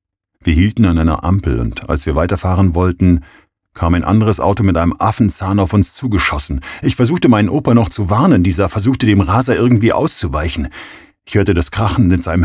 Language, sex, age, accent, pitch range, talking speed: German, male, 50-69, German, 80-100 Hz, 190 wpm